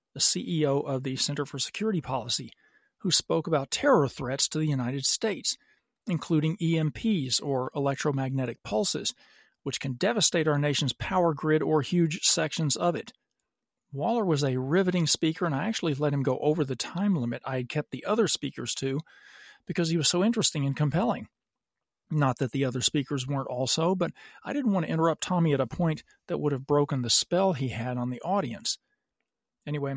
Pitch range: 135-175 Hz